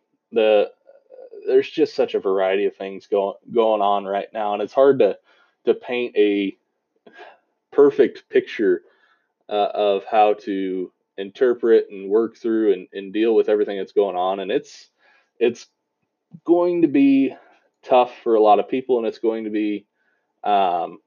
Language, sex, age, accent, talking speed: English, male, 20-39, American, 160 wpm